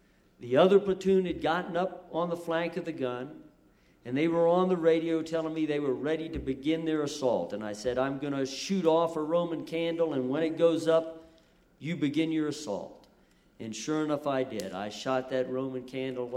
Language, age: English, 50-69